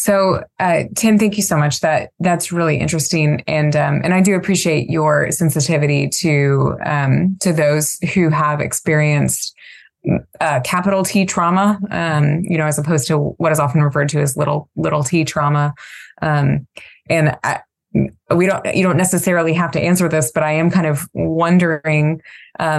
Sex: female